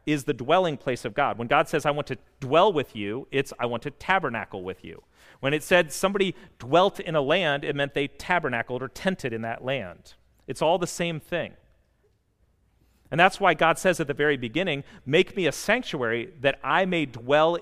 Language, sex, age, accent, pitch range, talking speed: English, male, 40-59, American, 95-155 Hz, 210 wpm